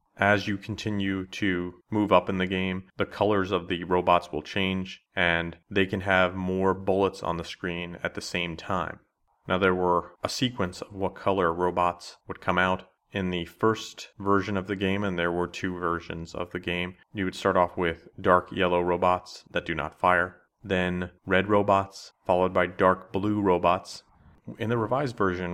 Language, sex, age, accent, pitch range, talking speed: English, male, 30-49, American, 90-105 Hz, 190 wpm